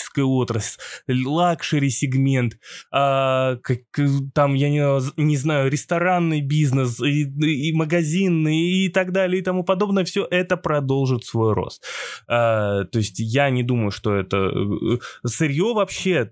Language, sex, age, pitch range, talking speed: Russian, male, 20-39, 120-165 Hz, 120 wpm